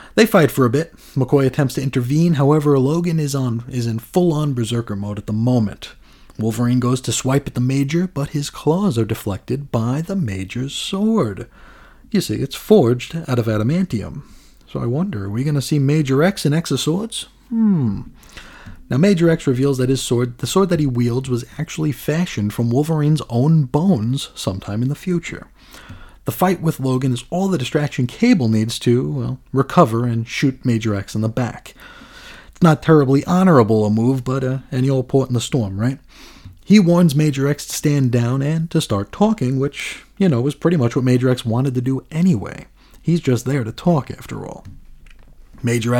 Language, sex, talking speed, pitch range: English, male, 190 wpm, 120-155 Hz